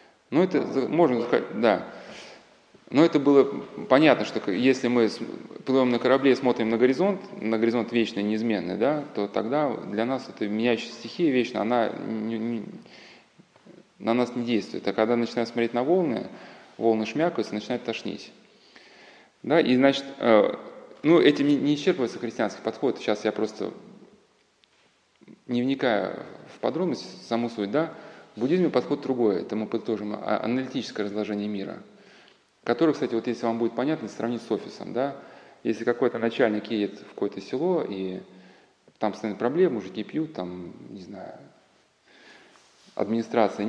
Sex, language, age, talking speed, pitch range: male, Russian, 20-39, 145 wpm, 110-135 Hz